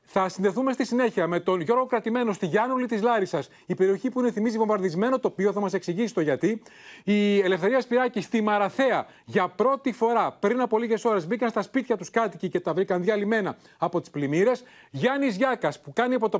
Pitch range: 185-240 Hz